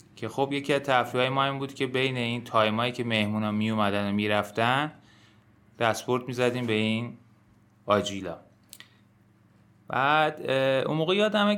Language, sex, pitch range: Persian, male, 105-135 Hz